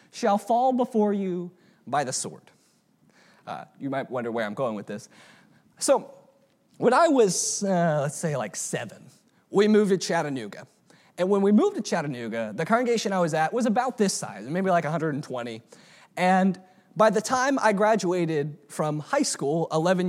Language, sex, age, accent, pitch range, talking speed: English, male, 30-49, American, 185-260 Hz, 170 wpm